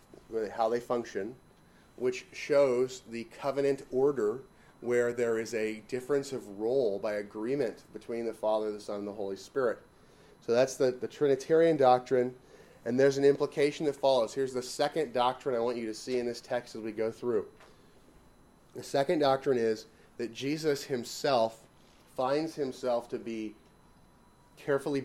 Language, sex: English, male